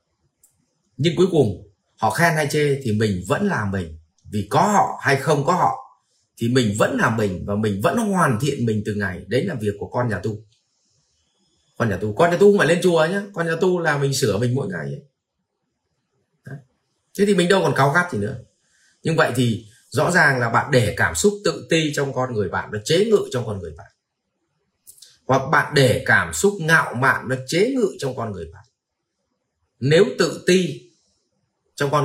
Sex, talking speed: male, 205 wpm